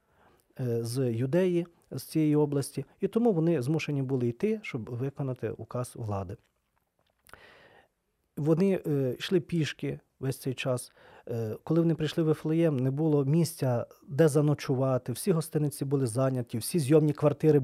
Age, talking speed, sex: 40-59, 130 wpm, male